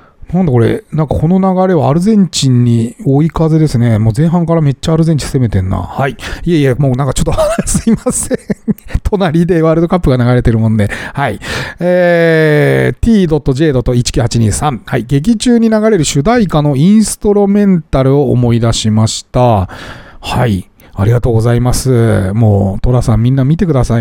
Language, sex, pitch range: Japanese, male, 120-180 Hz